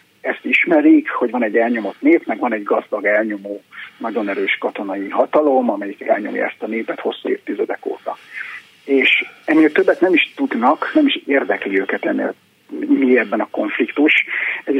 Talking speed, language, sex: 160 wpm, Hungarian, male